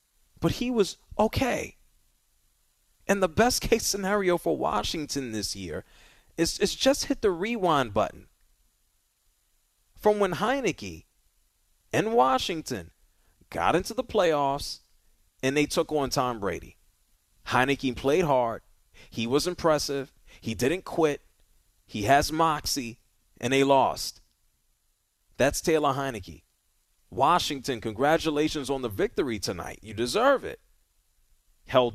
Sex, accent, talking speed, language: male, American, 115 wpm, English